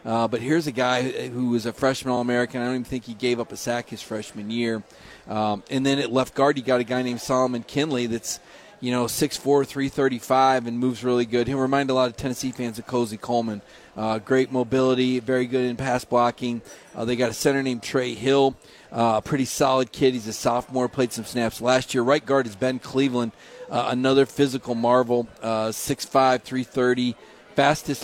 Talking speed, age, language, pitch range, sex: 205 wpm, 40-59, English, 120-135 Hz, male